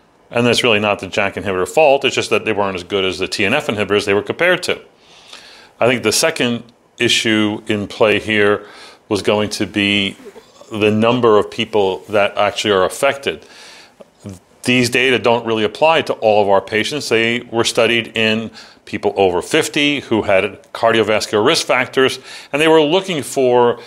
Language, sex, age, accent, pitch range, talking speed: English, male, 40-59, American, 105-140 Hz, 175 wpm